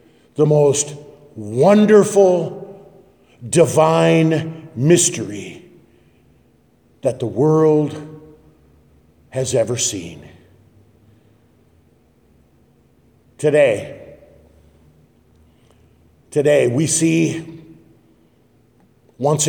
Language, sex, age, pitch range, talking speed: English, male, 50-69, 120-195 Hz, 50 wpm